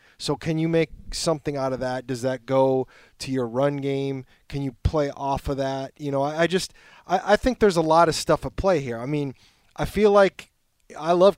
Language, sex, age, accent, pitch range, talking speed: English, male, 20-39, American, 135-170 Hz, 230 wpm